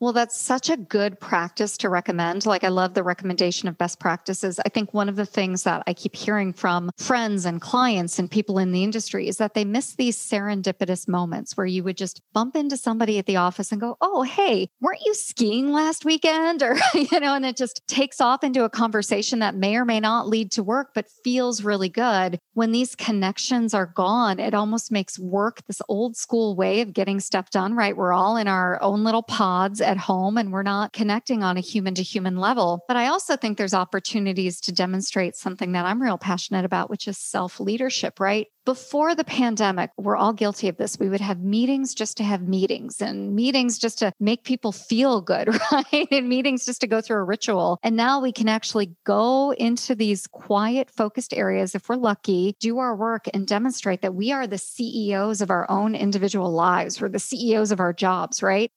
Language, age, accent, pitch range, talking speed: English, 40-59, American, 190-240 Hz, 215 wpm